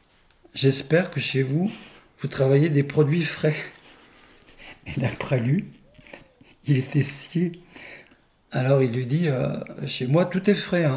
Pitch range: 125-155 Hz